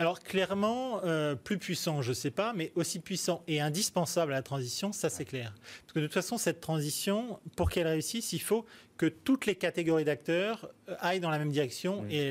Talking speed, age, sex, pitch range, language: 205 wpm, 30-49, male, 130-170 Hz, French